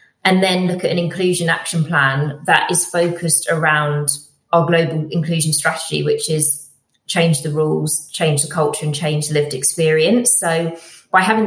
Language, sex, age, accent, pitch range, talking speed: English, female, 20-39, British, 150-185 Hz, 170 wpm